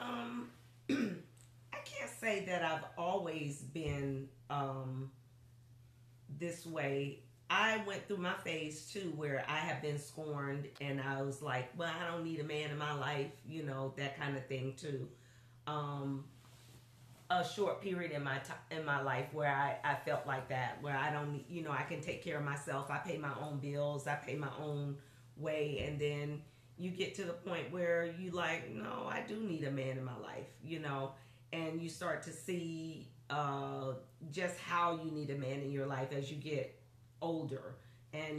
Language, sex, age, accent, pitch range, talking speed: English, female, 40-59, American, 130-160 Hz, 185 wpm